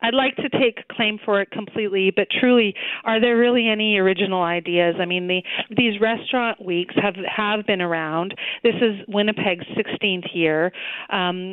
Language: English